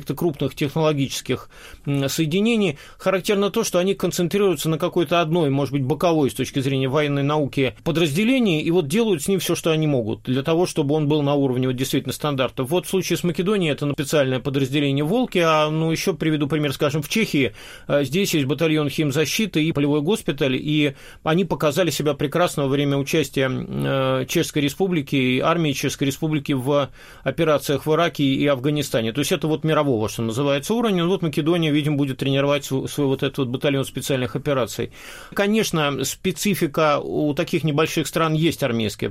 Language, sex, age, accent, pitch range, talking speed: Russian, male, 30-49, native, 140-170 Hz, 175 wpm